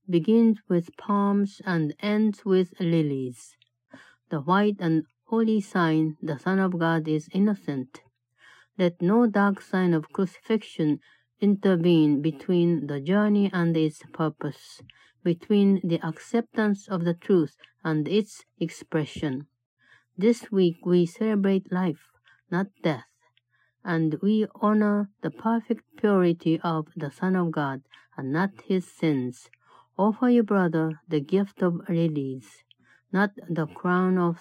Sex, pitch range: female, 155-200 Hz